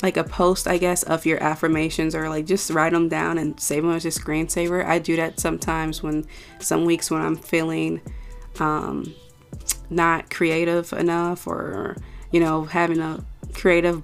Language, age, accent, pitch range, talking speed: English, 20-39, American, 160-195 Hz, 170 wpm